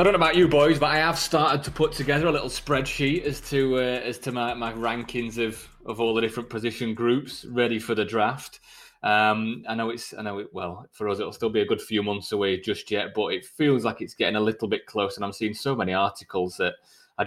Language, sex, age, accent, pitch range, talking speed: English, male, 20-39, British, 110-150 Hz, 255 wpm